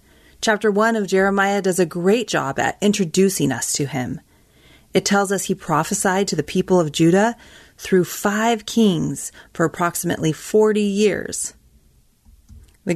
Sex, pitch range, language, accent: female, 145-205 Hz, English, American